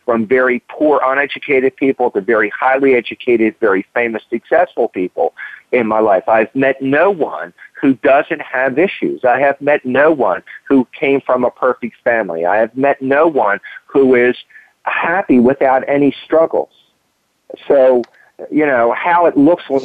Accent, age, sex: American, 50-69, male